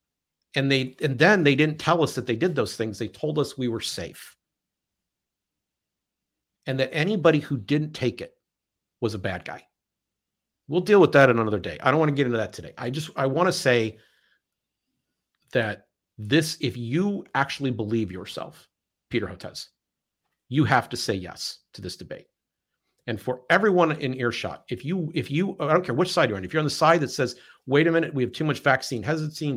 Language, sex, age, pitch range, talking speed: English, male, 50-69, 120-155 Hz, 205 wpm